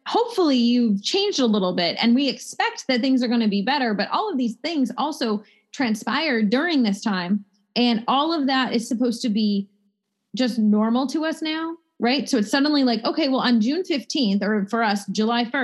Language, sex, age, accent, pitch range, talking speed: English, female, 30-49, American, 200-245 Hz, 205 wpm